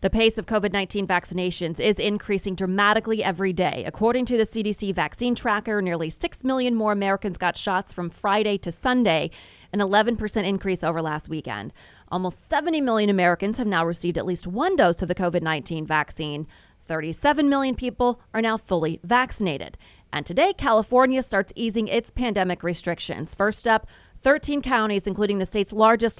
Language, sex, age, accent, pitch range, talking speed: English, female, 30-49, American, 180-230 Hz, 165 wpm